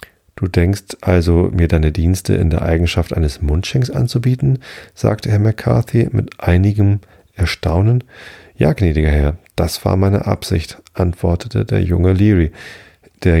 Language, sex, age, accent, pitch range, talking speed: German, male, 40-59, German, 85-105 Hz, 135 wpm